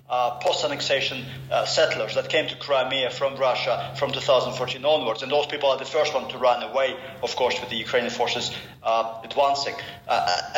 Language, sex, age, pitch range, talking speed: English, male, 40-59, 130-160 Hz, 185 wpm